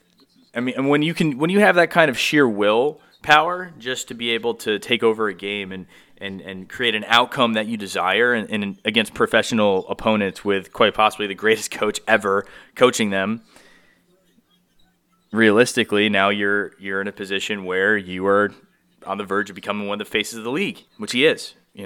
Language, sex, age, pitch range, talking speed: English, male, 20-39, 100-130 Hz, 200 wpm